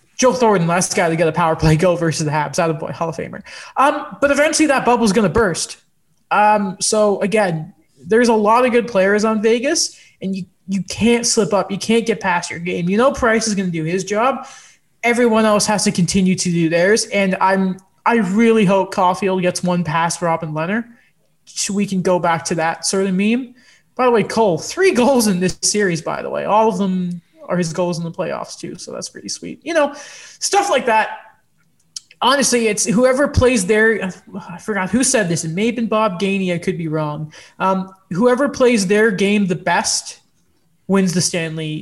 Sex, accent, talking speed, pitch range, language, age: male, American, 215 wpm, 180-230 Hz, English, 20-39